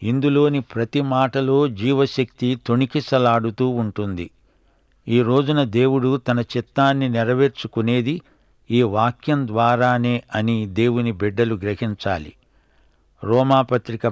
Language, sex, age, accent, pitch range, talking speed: Telugu, male, 60-79, native, 110-130 Hz, 80 wpm